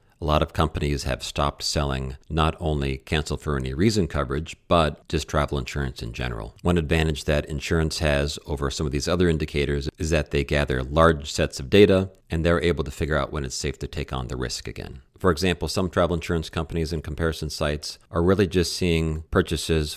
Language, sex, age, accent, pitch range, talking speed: English, male, 40-59, American, 70-85 Hz, 205 wpm